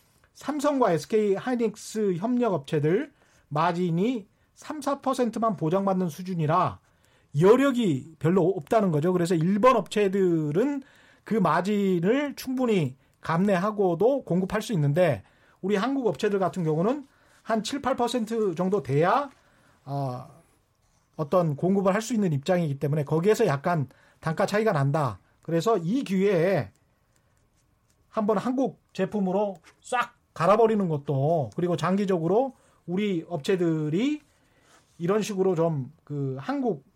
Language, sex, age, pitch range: Korean, male, 40-59, 155-225 Hz